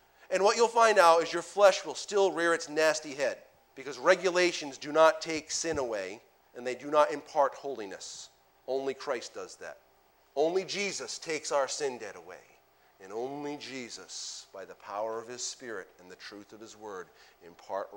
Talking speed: 180 wpm